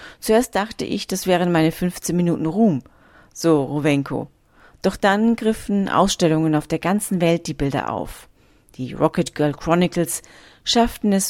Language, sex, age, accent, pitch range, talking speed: German, female, 40-59, German, 150-195 Hz, 150 wpm